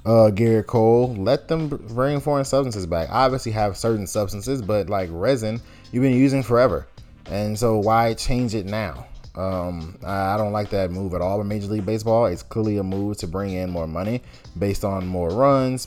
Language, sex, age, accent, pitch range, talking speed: English, male, 20-39, American, 90-115 Hz, 195 wpm